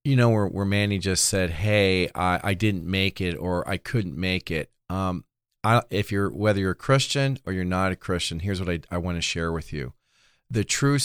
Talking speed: 230 wpm